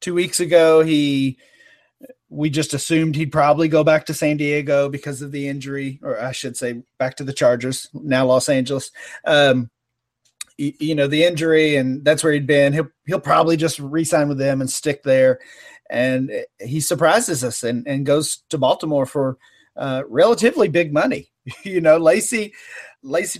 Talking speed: 175 wpm